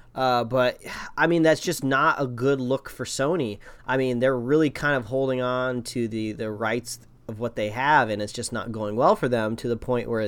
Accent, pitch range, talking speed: American, 120-140 Hz, 235 wpm